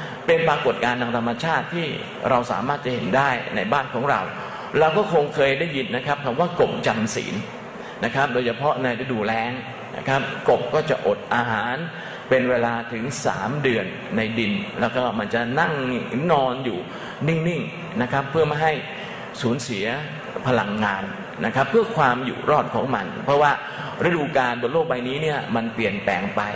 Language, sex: Thai, male